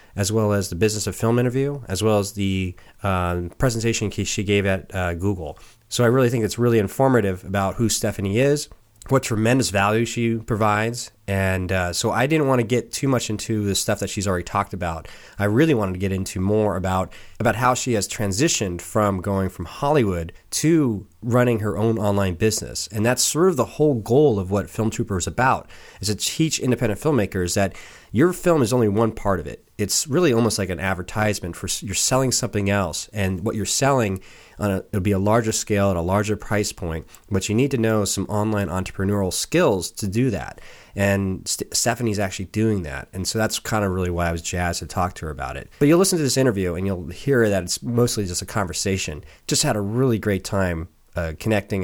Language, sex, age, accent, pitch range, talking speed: English, male, 30-49, American, 95-115 Hz, 215 wpm